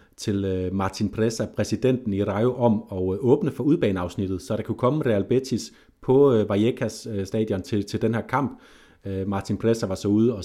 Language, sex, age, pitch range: Danish, male, 30-49, 100-115 Hz